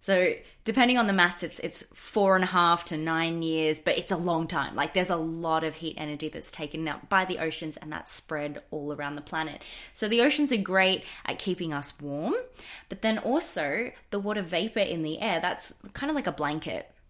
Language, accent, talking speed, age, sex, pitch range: English, Australian, 220 wpm, 20-39, female, 155-210 Hz